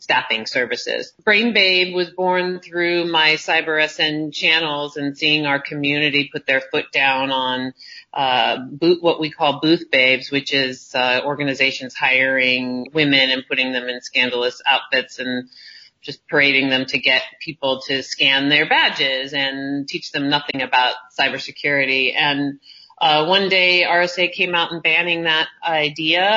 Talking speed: 150 wpm